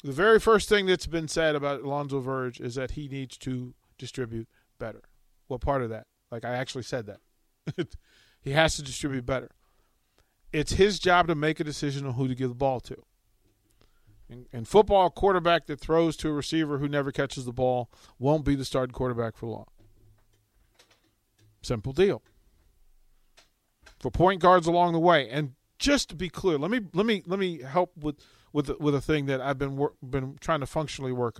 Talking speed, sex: 195 wpm, male